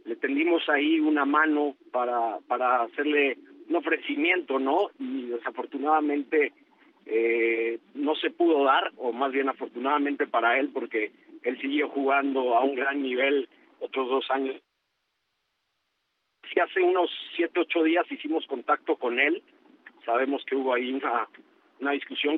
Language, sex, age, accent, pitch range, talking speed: Spanish, male, 50-69, Mexican, 135-175 Hz, 140 wpm